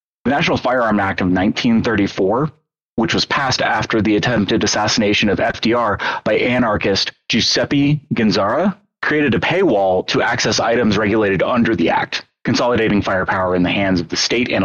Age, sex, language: 30-49, male, English